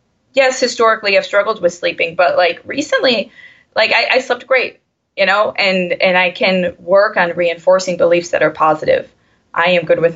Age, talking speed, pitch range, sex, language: 20-39, 185 wpm, 175-220 Hz, female, English